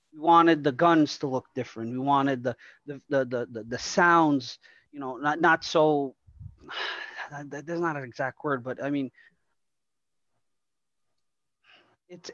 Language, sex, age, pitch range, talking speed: English, male, 30-49, 125-165 Hz, 145 wpm